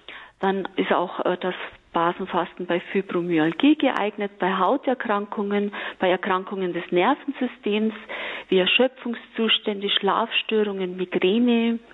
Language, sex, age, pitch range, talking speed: German, female, 40-59, 185-255 Hz, 90 wpm